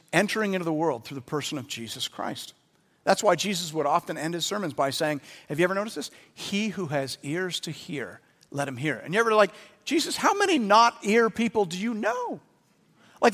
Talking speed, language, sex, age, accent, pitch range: 210 wpm, English, male, 50-69, American, 160-225 Hz